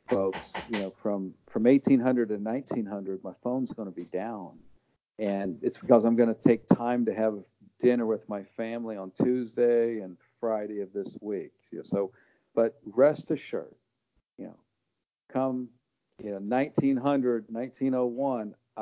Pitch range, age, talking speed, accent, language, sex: 100-125 Hz, 50-69, 140 wpm, American, English, male